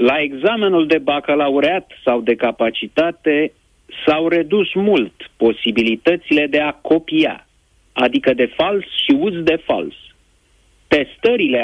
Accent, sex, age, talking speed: native, male, 30-49, 115 wpm